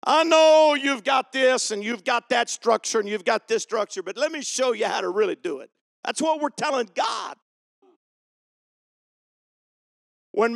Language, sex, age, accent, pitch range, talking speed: English, male, 50-69, American, 215-285 Hz, 175 wpm